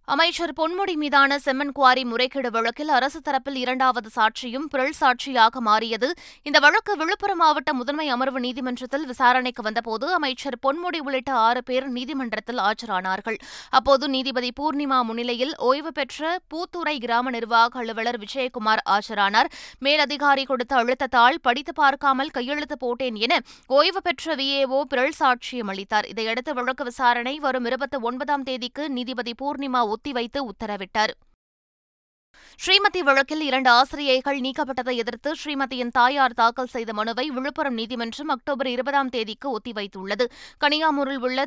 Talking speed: 120 wpm